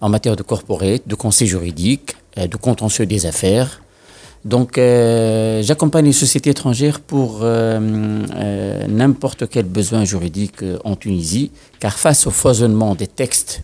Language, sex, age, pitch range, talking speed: Arabic, male, 50-69, 100-120 Hz, 140 wpm